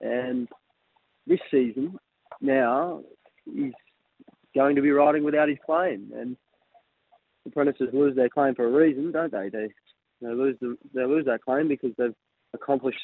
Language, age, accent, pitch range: English, 20-39, Australian, 120-130 Hz